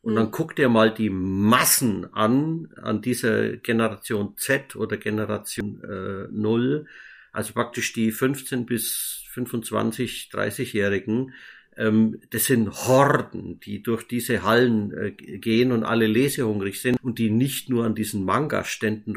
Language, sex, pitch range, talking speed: German, male, 110-125 Hz, 140 wpm